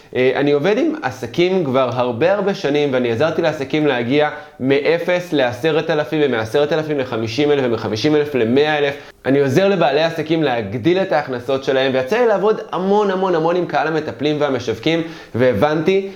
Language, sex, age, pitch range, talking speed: Hebrew, male, 20-39, 145-195 Hz, 135 wpm